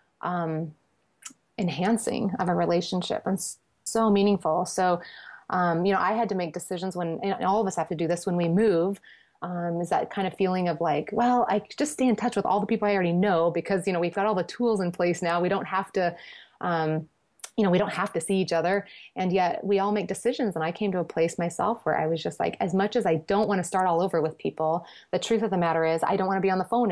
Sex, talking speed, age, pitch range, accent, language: female, 265 wpm, 30-49, 170-200 Hz, American, English